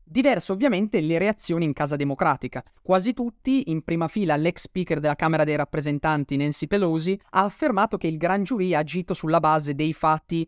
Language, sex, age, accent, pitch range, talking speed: Italian, male, 20-39, native, 145-170 Hz, 185 wpm